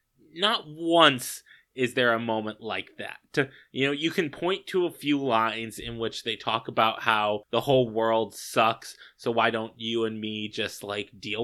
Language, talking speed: English, 190 wpm